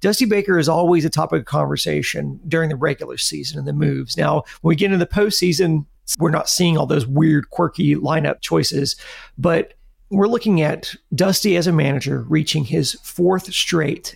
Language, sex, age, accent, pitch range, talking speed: English, male, 40-59, American, 155-190 Hz, 180 wpm